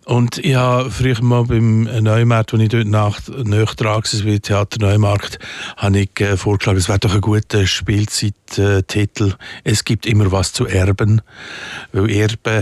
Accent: Austrian